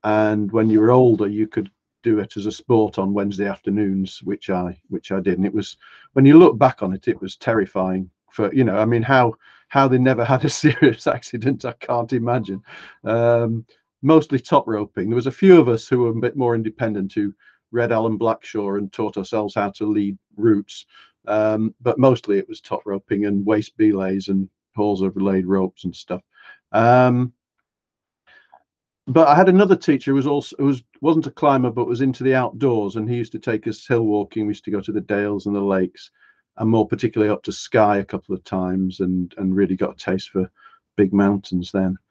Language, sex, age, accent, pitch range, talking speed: English, male, 50-69, British, 100-125 Hz, 210 wpm